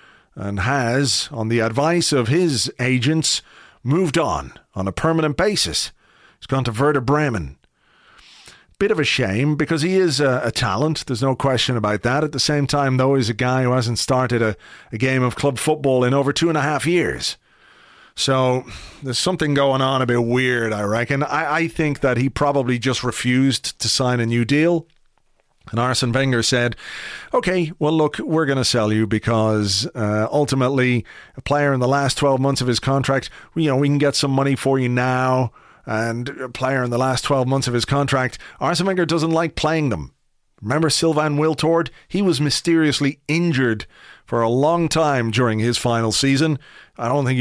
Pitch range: 120-145 Hz